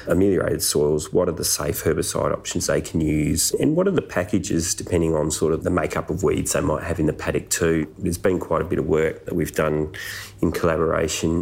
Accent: Australian